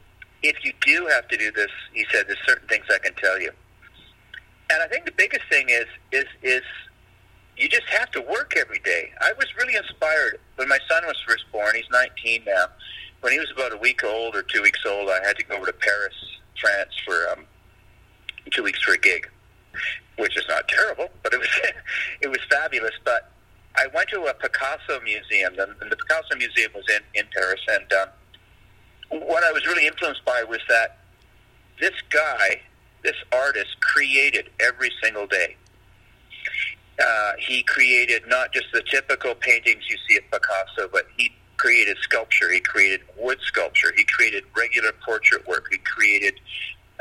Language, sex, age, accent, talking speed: English, male, 50-69, American, 180 wpm